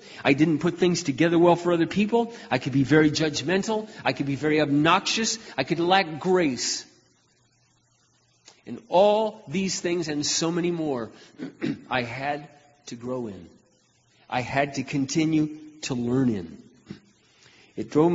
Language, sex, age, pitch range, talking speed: English, male, 40-59, 130-170 Hz, 150 wpm